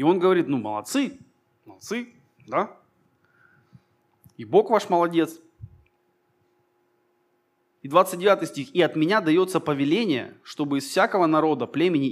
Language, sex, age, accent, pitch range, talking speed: Russian, male, 20-39, native, 125-175 Hz, 120 wpm